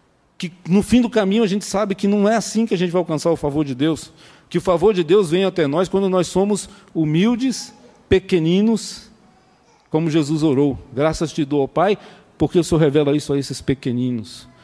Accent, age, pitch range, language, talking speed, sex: Brazilian, 40-59, 130-190 Hz, Portuguese, 205 wpm, male